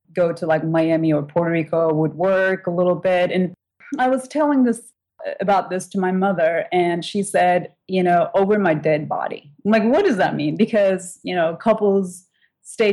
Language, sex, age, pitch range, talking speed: English, female, 30-49, 165-195 Hz, 195 wpm